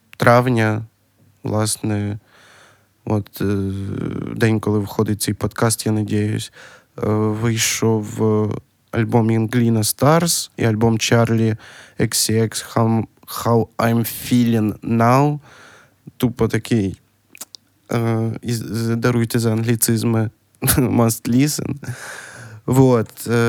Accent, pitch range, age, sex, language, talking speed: native, 110-125 Hz, 20-39, male, Ukrainian, 90 wpm